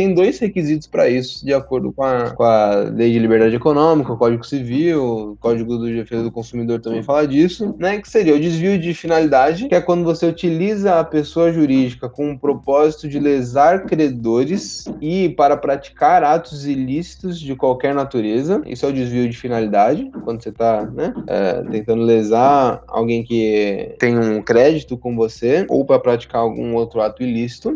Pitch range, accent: 125-165 Hz, Brazilian